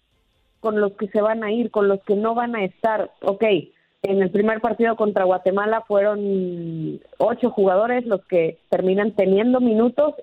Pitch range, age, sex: 195-245 Hz, 30-49, female